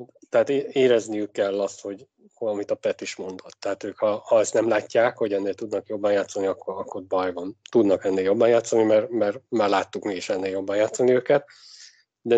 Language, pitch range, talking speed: Hungarian, 100-130 Hz, 200 wpm